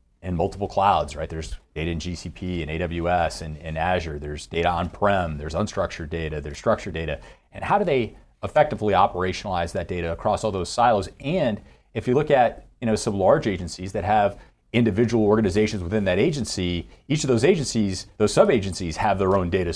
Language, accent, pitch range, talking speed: English, American, 85-105 Hz, 185 wpm